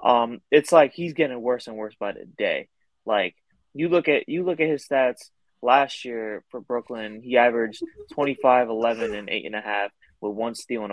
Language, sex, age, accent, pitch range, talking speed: English, male, 20-39, American, 120-170 Hz, 205 wpm